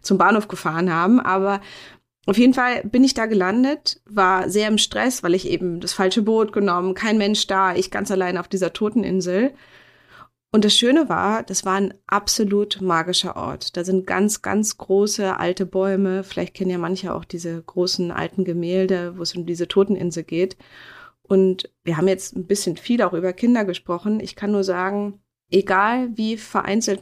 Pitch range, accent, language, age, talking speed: 180-205 Hz, German, German, 30-49, 180 wpm